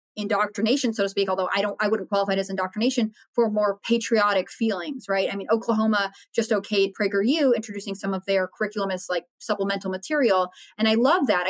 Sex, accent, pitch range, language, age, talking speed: female, American, 200-240 Hz, English, 20-39, 195 wpm